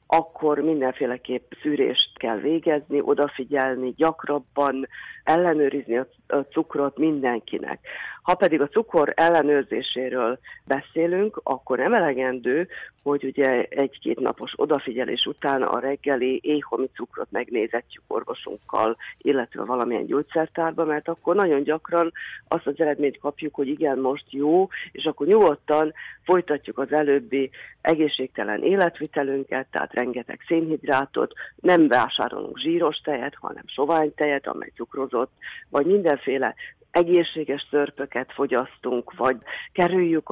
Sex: female